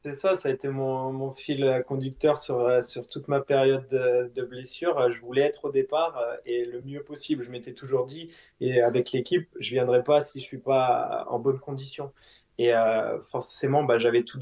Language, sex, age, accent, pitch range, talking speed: French, male, 20-39, French, 125-145 Hz, 215 wpm